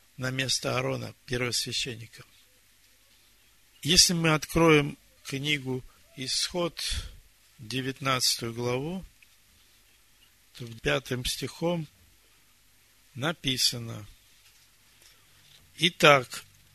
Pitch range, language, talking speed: 110-150 Hz, Russian, 55 wpm